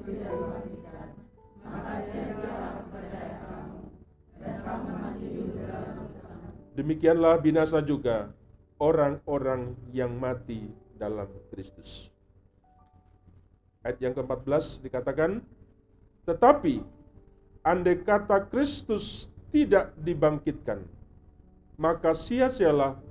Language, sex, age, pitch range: Indonesian, male, 50-69, 100-145 Hz